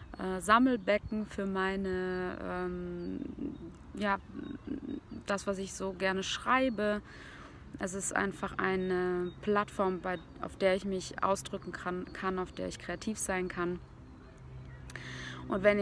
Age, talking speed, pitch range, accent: 20-39, 120 wpm, 175-195 Hz, German